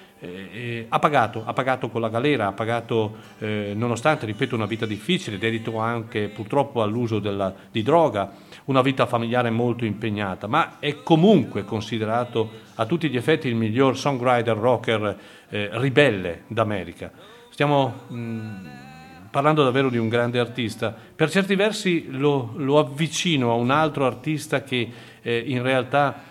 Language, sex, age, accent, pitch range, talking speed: Italian, male, 40-59, native, 110-145 Hz, 145 wpm